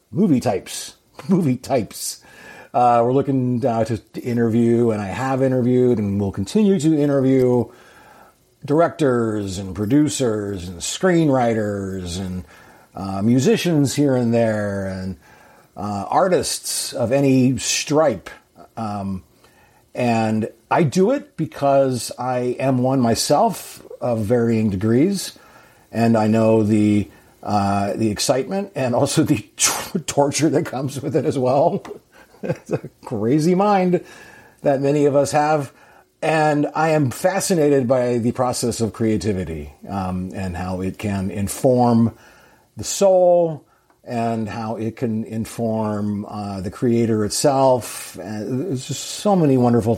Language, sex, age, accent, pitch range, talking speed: English, male, 50-69, American, 110-140 Hz, 125 wpm